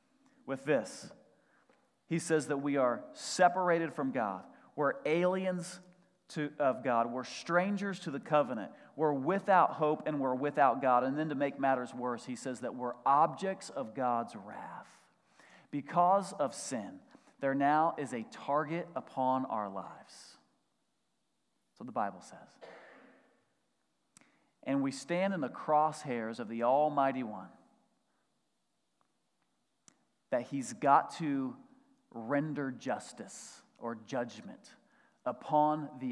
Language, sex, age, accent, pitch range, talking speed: English, male, 40-59, American, 125-180 Hz, 125 wpm